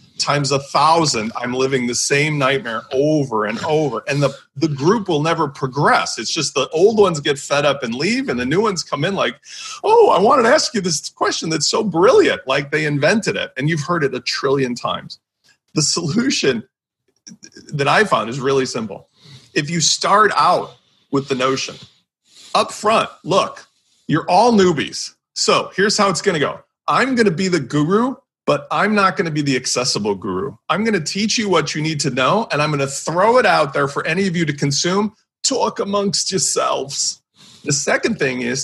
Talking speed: 205 wpm